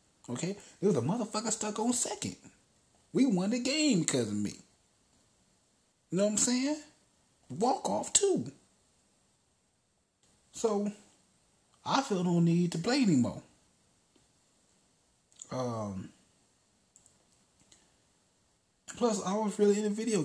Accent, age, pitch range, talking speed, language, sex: American, 30-49, 115-190 Hz, 115 wpm, English, male